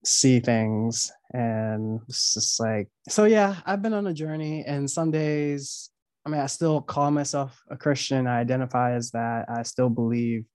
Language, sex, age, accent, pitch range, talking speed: English, male, 20-39, American, 115-145 Hz, 175 wpm